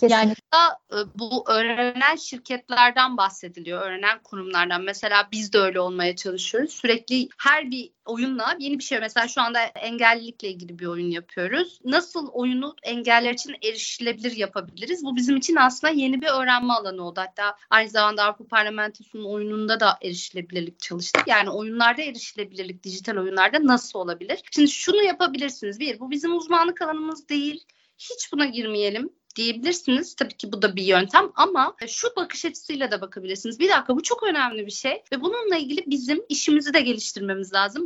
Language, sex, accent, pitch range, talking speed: Turkish, female, native, 210-290 Hz, 155 wpm